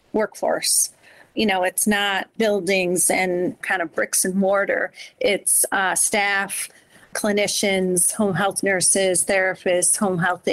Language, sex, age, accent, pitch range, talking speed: English, female, 40-59, American, 185-210 Hz, 125 wpm